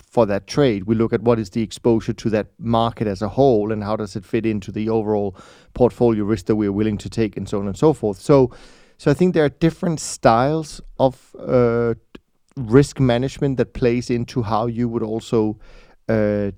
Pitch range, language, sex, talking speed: 115-135 Hz, English, male, 205 wpm